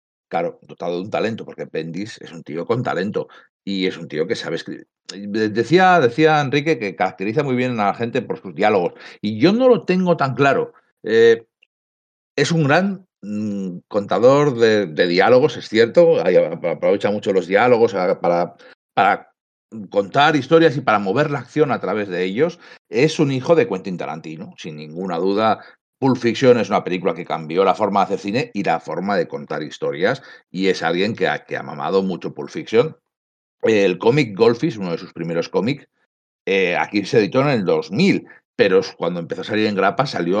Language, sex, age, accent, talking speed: Spanish, male, 60-79, Spanish, 190 wpm